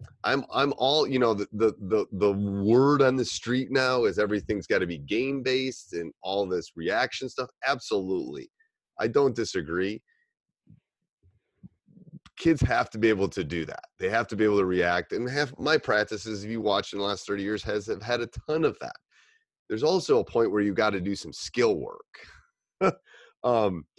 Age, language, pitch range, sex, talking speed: 30-49, English, 95-130 Hz, male, 190 wpm